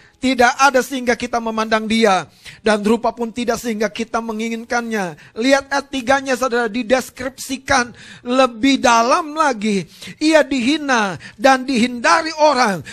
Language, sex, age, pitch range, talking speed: Indonesian, male, 40-59, 195-275 Hz, 115 wpm